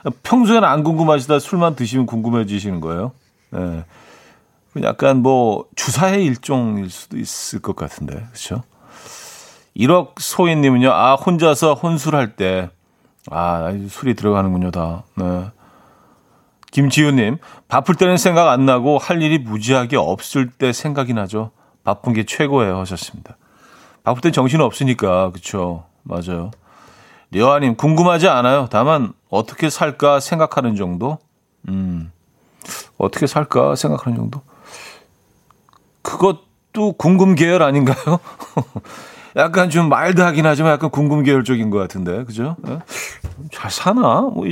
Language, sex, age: Korean, male, 40-59